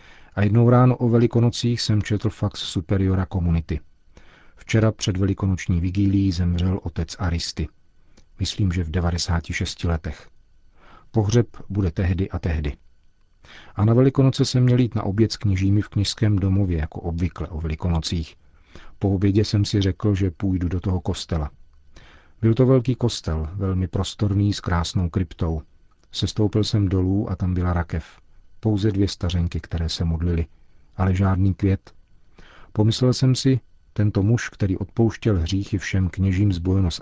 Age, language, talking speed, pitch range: 40-59, Czech, 150 wpm, 85-105 Hz